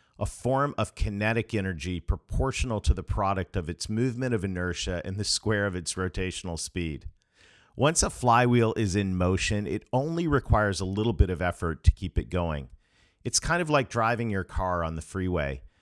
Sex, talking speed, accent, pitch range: male, 185 wpm, American, 85-115 Hz